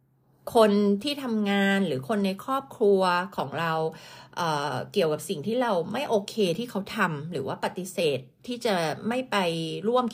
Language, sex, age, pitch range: Thai, female, 30-49, 165-230 Hz